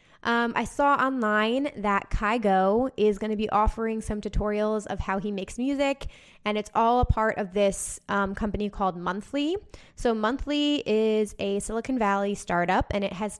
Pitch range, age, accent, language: 195-225 Hz, 20-39, American, English